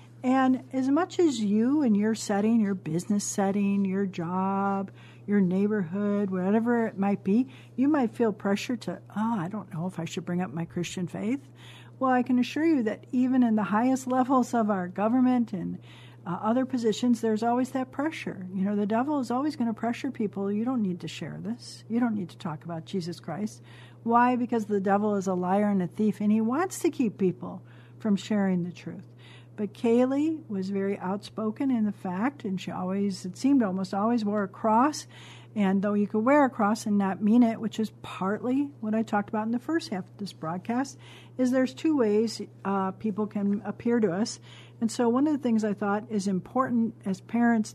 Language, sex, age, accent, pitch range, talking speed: English, female, 60-79, American, 190-240 Hz, 210 wpm